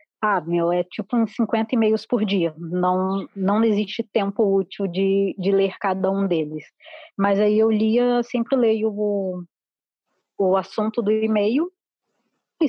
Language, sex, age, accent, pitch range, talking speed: Portuguese, female, 20-39, Brazilian, 195-240 Hz, 160 wpm